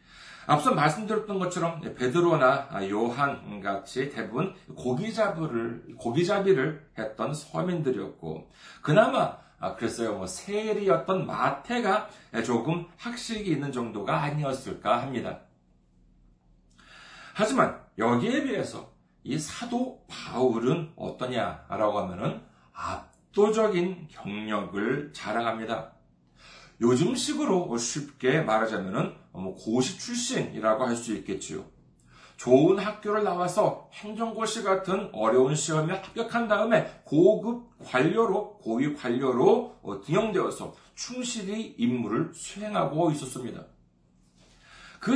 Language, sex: Korean, male